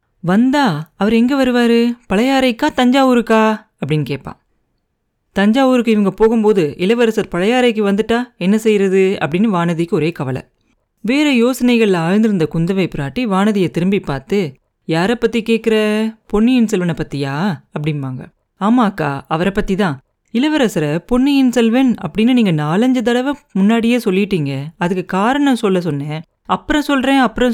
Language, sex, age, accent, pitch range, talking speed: Tamil, female, 30-49, native, 175-235 Hz, 120 wpm